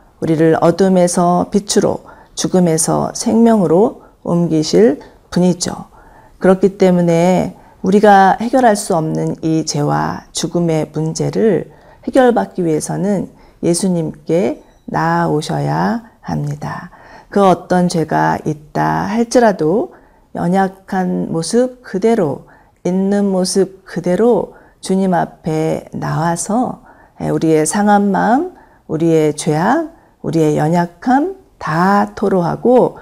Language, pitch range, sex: Korean, 160-205 Hz, female